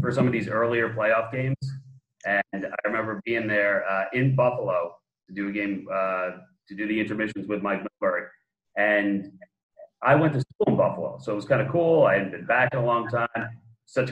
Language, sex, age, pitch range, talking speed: English, male, 30-49, 100-125 Hz, 210 wpm